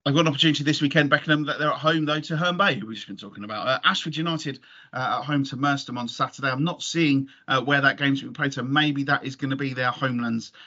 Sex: male